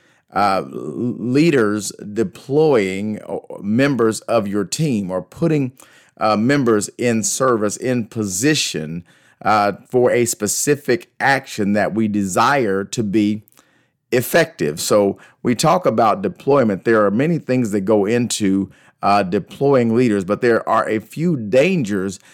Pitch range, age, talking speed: 100-130 Hz, 40-59, 125 wpm